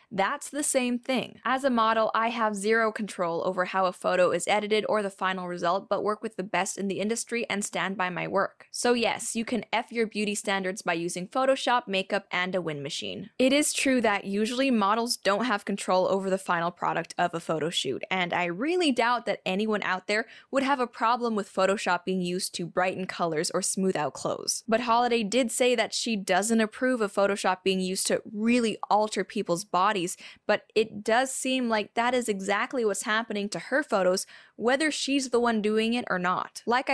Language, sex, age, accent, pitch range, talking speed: English, female, 10-29, American, 190-245 Hz, 210 wpm